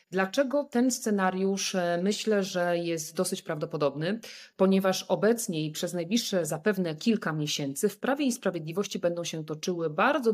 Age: 40-59